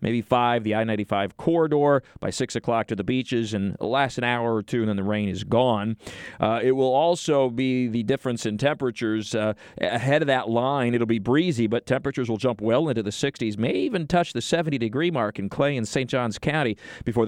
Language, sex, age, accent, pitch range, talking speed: English, male, 40-59, American, 115-145 Hz, 220 wpm